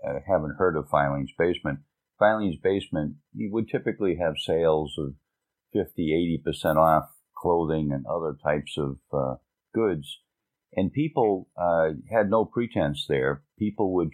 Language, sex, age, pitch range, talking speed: English, male, 50-69, 75-95 Hz, 140 wpm